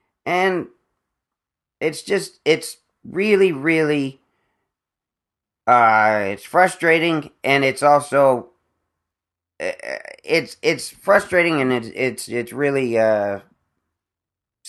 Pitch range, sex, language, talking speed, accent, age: 110-150 Hz, male, English, 85 wpm, American, 40-59